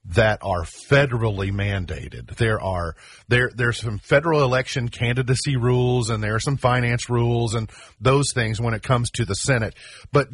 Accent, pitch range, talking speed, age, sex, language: American, 105-130 Hz, 170 wpm, 40-59, male, English